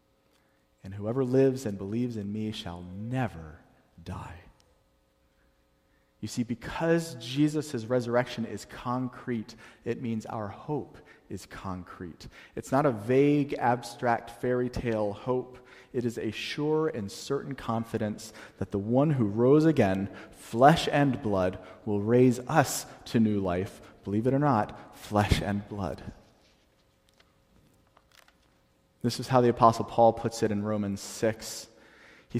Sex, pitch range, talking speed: male, 100-130 Hz, 135 wpm